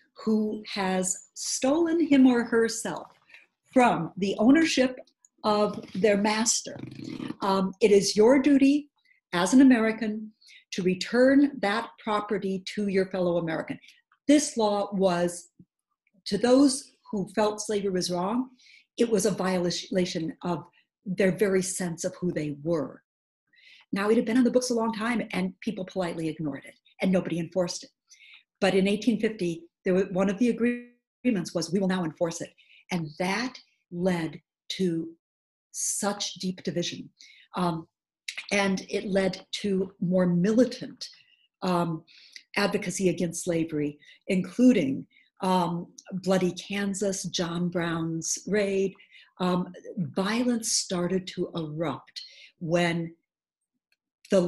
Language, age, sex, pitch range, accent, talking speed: English, 50-69, female, 175-225 Hz, American, 125 wpm